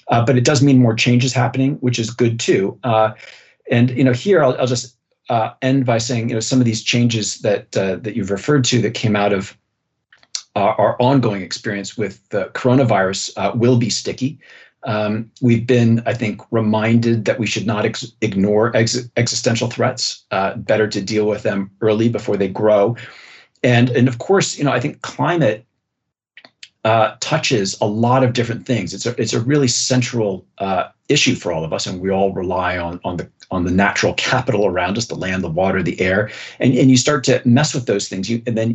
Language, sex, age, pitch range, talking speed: English, male, 40-59, 105-125 Hz, 210 wpm